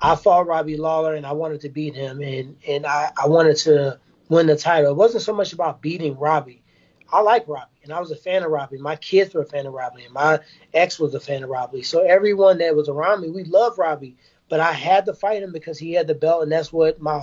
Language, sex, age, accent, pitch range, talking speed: English, male, 20-39, American, 150-180 Hz, 260 wpm